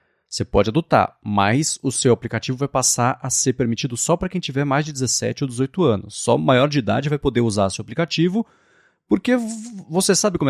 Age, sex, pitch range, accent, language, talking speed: 30-49, male, 115-165 Hz, Brazilian, Portuguese, 200 wpm